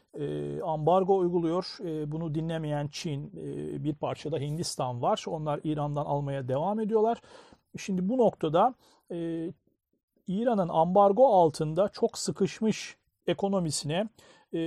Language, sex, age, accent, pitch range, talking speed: Turkish, male, 40-59, native, 155-200 Hz, 95 wpm